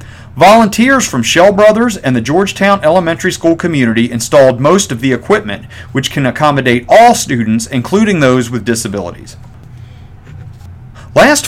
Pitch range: 115-170 Hz